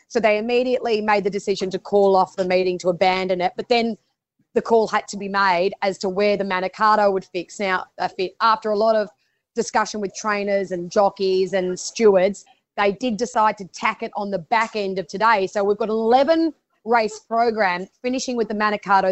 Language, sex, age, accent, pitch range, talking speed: English, female, 20-39, Australian, 190-230 Hz, 200 wpm